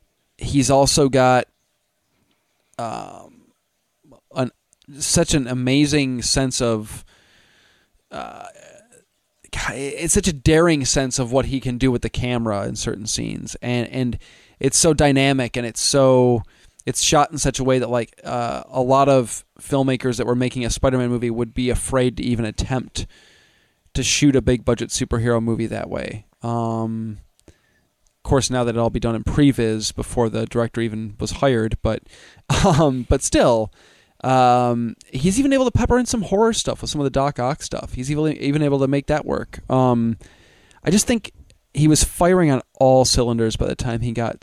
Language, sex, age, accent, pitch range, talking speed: English, male, 20-39, American, 115-140 Hz, 175 wpm